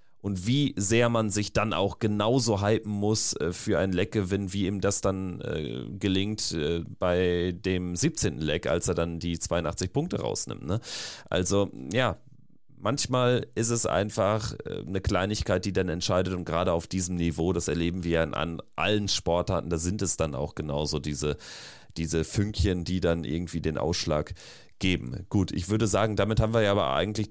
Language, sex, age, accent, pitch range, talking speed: German, male, 30-49, German, 90-105 Hz, 170 wpm